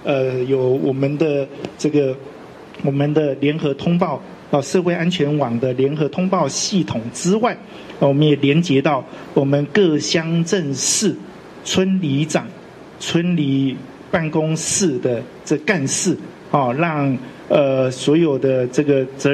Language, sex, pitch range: Chinese, male, 140-175 Hz